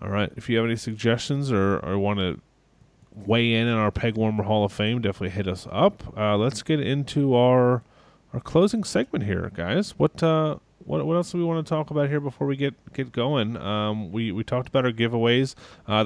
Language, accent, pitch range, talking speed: English, American, 105-135 Hz, 220 wpm